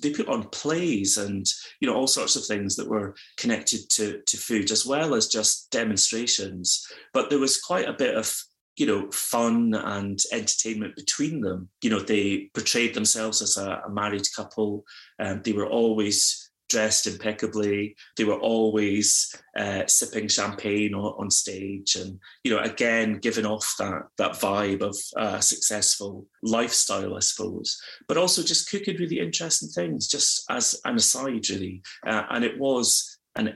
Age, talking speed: 30-49, 165 wpm